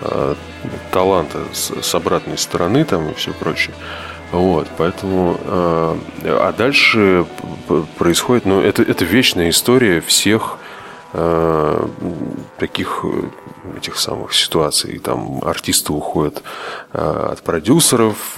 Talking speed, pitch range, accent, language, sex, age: 95 wpm, 80-95 Hz, native, Russian, male, 20-39